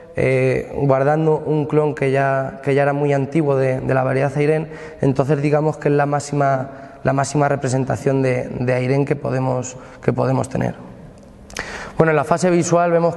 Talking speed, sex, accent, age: 180 wpm, male, Spanish, 20-39